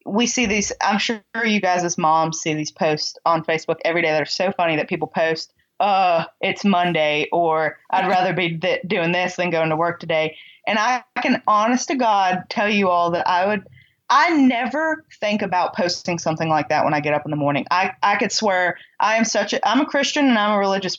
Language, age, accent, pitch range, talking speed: English, 20-39, American, 165-205 Hz, 230 wpm